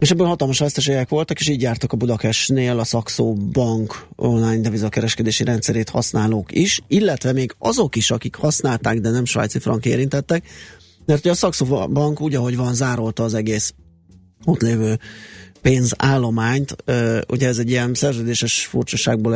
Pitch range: 110-125 Hz